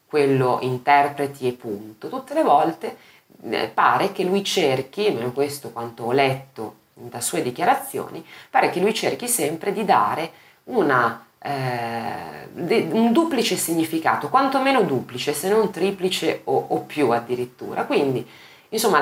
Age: 30-49